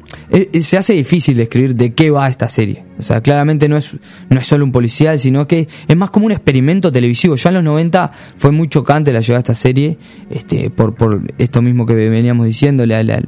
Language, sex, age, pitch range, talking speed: Spanish, male, 20-39, 120-155 Hz, 220 wpm